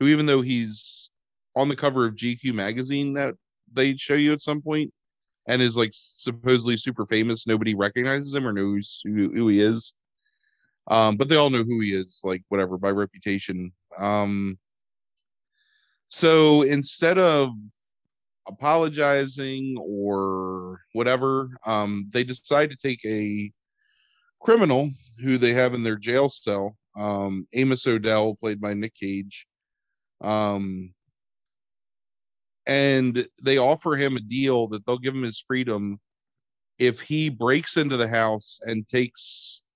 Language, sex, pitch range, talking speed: English, male, 105-135 Hz, 140 wpm